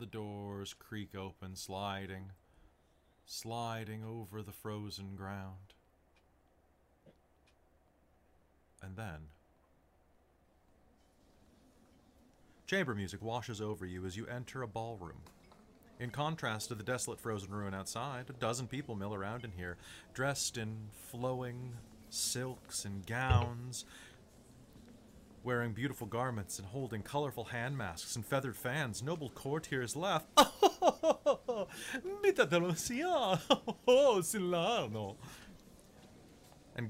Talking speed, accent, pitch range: 95 wpm, American, 95-125 Hz